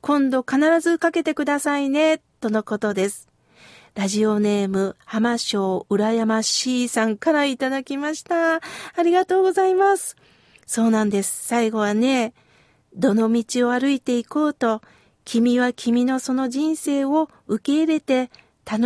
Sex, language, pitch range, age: female, Japanese, 210-275 Hz, 50-69